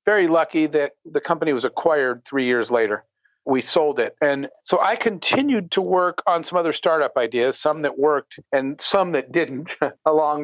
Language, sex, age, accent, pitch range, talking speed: English, male, 50-69, American, 135-170 Hz, 185 wpm